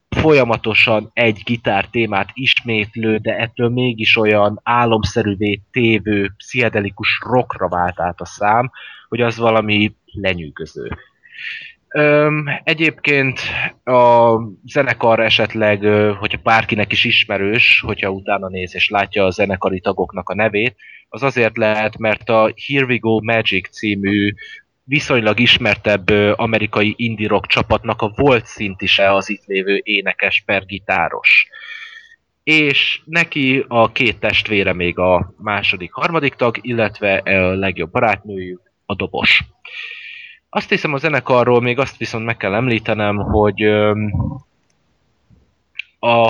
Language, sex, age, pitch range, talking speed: Hungarian, male, 20-39, 105-125 Hz, 120 wpm